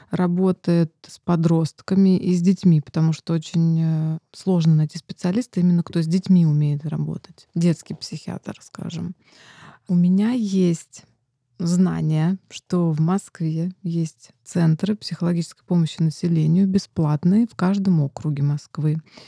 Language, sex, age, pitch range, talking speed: Russian, female, 20-39, 160-195 Hz, 120 wpm